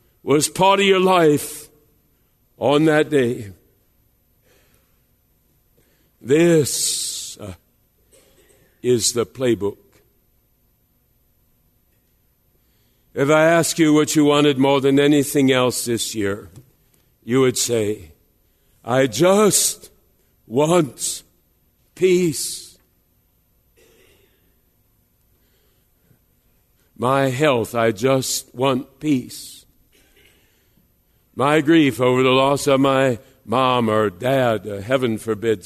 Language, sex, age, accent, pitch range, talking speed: English, male, 60-79, American, 125-155 Hz, 85 wpm